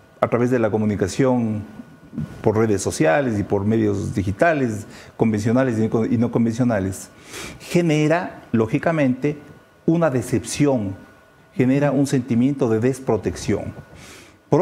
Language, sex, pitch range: English, male, 115-160 Hz